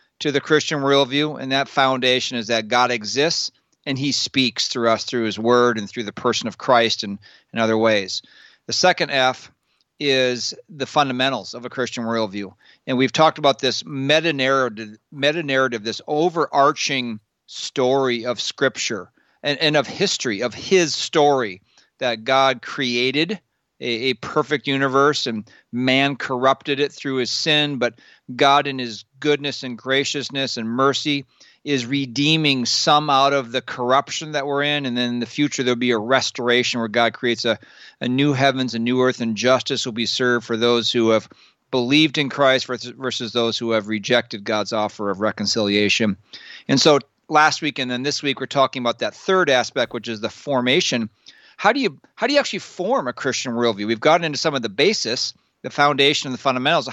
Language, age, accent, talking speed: English, 40-59, American, 180 wpm